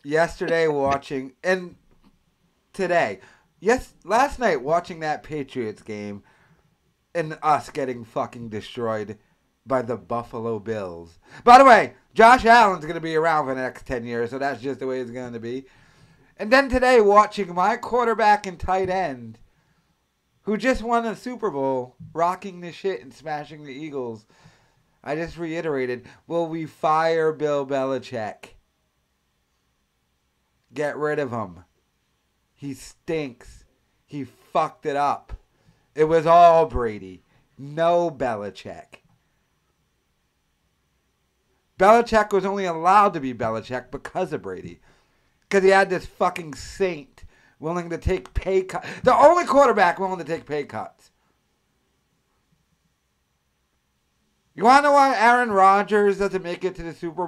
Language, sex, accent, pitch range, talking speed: English, male, American, 120-190 Hz, 135 wpm